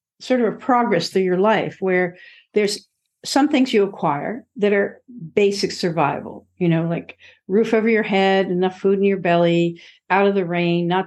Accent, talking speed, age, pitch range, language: American, 185 wpm, 50-69, 175-220 Hz, English